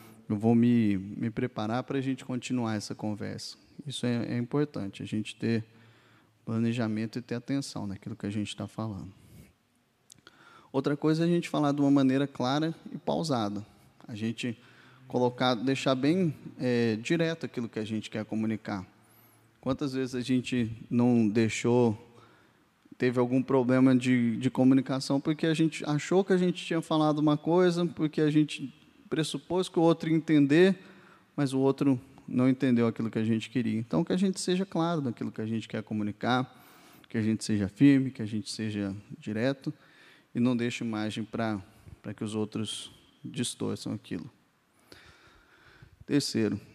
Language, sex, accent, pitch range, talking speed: Portuguese, male, Brazilian, 110-140 Hz, 160 wpm